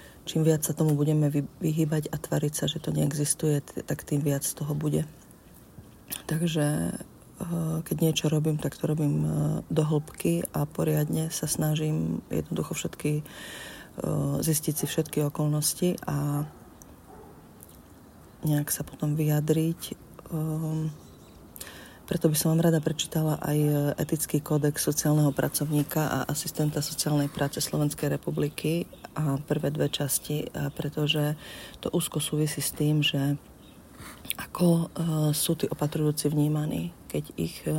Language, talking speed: English, 120 wpm